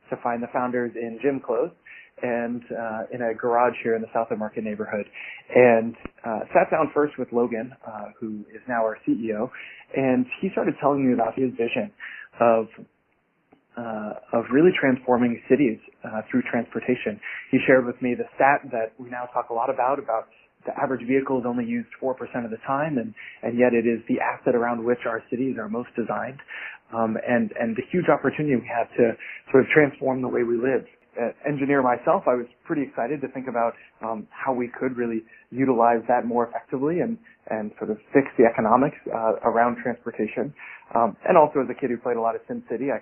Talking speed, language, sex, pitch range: 205 wpm, English, male, 115-135 Hz